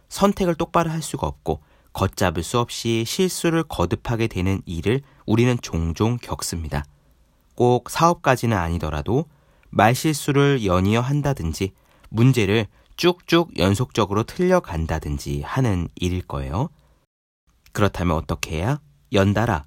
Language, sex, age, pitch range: Korean, male, 40-59, 85-135 Hz